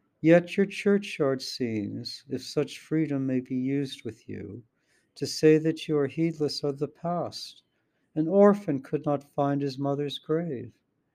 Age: 60-79